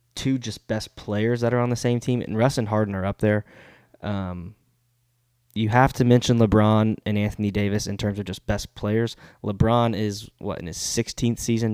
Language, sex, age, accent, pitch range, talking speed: English, male, 10-29, American, 105-120 Hz, 200 wpm